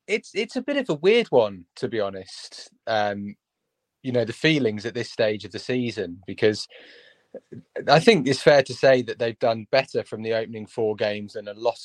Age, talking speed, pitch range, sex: 30-49, 210 wpm, 105-120 Hz, male